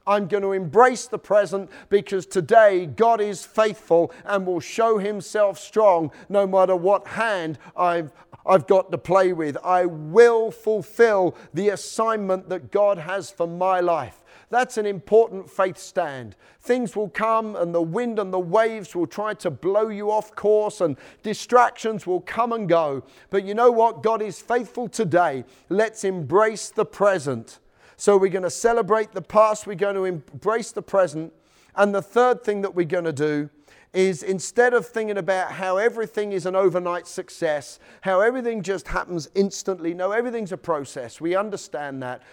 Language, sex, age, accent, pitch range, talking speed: English, male, 40-59, British, 175-215 Hz, 170 wpm